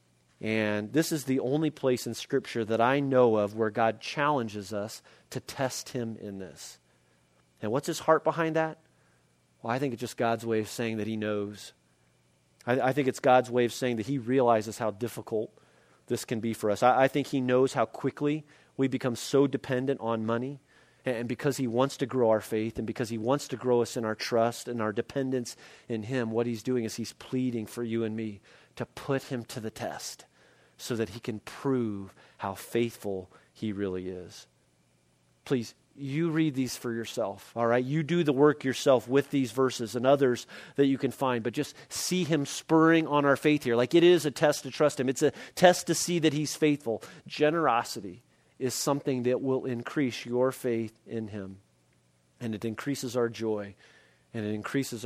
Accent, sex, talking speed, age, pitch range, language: American, male, 200 wpm, 40-59, 110-140 Hz, English